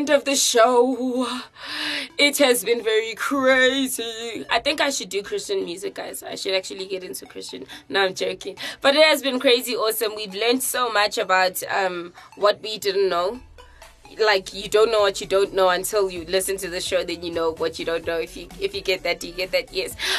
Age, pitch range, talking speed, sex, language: 20-39, 195-250 Hz, 215 wpm, female, English